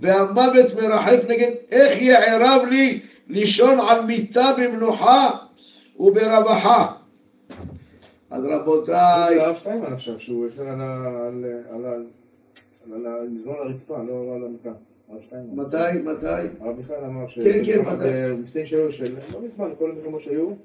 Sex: male